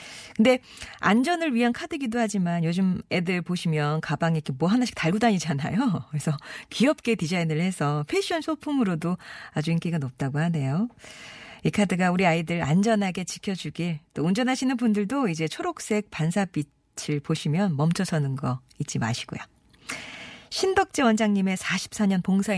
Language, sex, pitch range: Korean, female, 155-215 Hz